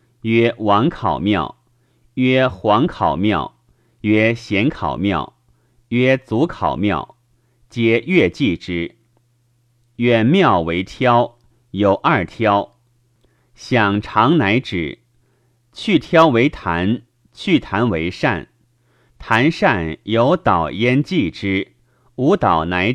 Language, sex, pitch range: Chinese, male, 110-125 Hz